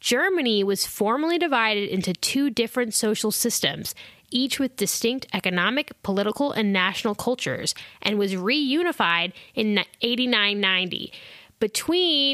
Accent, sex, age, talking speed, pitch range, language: American, female, 10-29, 115 wpm, 195-255 Hz, English